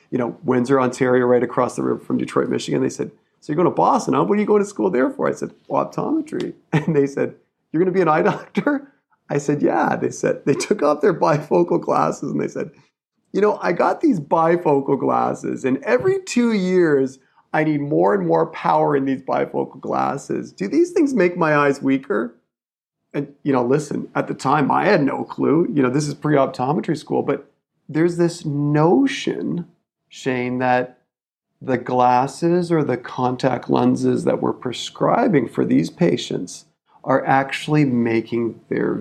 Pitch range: 125-165 Hz